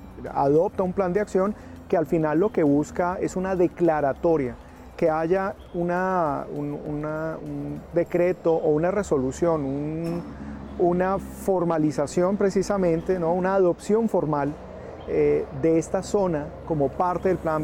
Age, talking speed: 40-59, 135 wpm